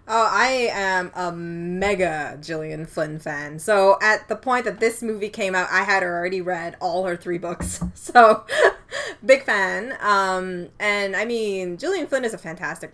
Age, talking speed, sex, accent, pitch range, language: 20-39, 170 wpm, female, American, 165-205 Hz, English